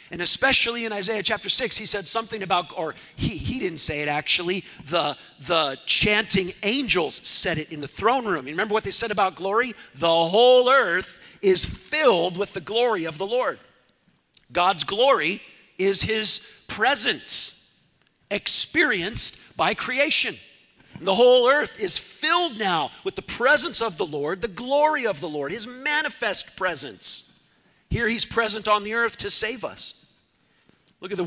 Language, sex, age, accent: English, male, 50-69, American